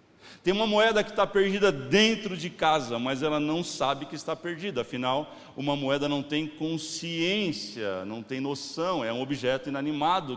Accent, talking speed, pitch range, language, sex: Brazilian, 170 wpm, 125-165 Hz, Portuguese, male